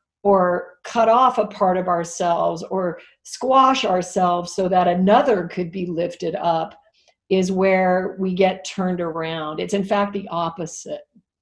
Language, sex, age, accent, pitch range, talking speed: English, female, 50-69, American, 170-205 Hz, 145 wpm